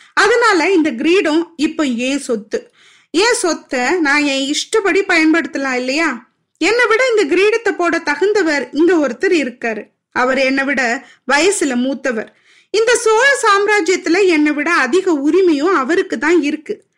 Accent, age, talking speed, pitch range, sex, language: native, 20-39, 125 wpm, 265-365 Hz, female, Tamil